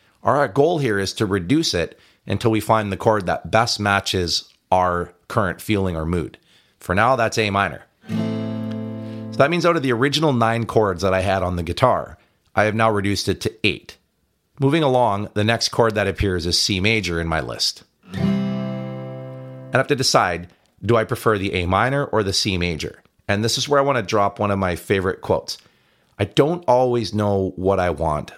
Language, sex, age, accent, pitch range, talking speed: English, male, 30-49, American, 90-115 Hz, 200 wpm